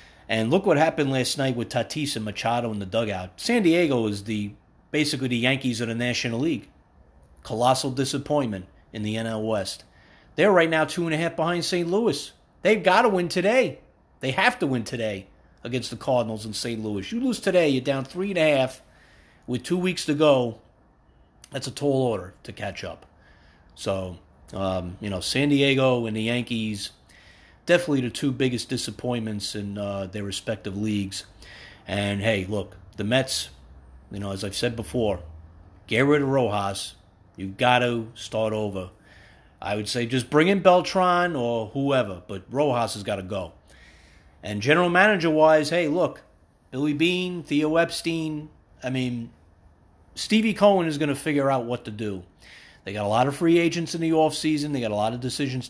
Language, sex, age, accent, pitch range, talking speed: English, male, 40-59, American, 100-145 Hz, 175 wpm